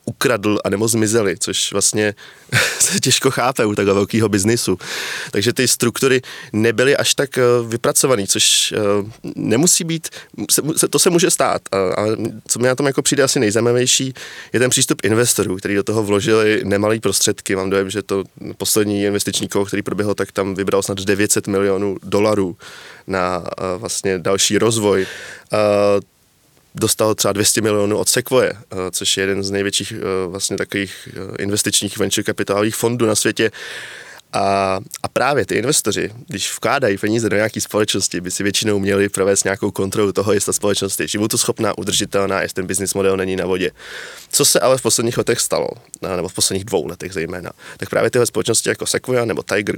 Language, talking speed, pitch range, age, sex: Czech, 165 wpm, 100-115 Hz, 20-39, male